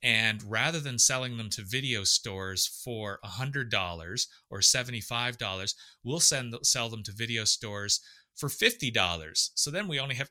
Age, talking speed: 30-49, 180 wpm